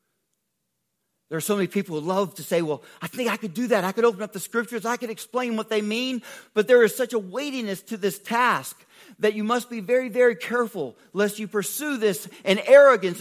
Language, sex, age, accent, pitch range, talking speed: English, male, 40-59, American, 135-210 Hz, 225 wpm